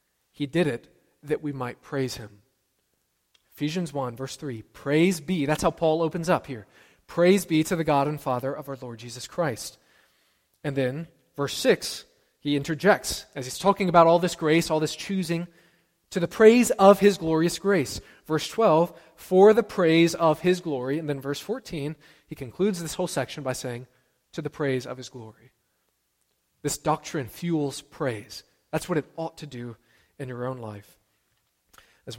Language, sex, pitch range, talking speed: English, male, 125-165 Hz, 175 wpm